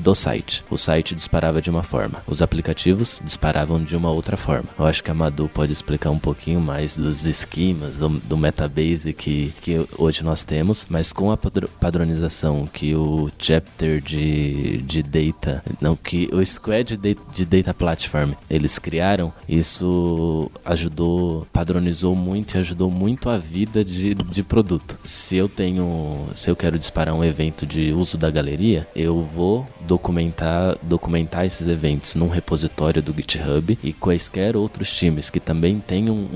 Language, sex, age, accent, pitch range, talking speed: Portuguese, male, 20-39, Brazilian, 80-90 Hz, 165 wpm